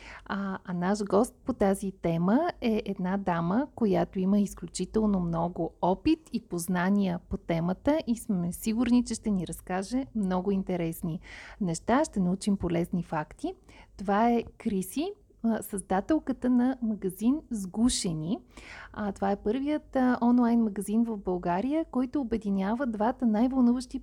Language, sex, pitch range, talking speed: Bulgarian, female, 185-235 Hz, 125 wpm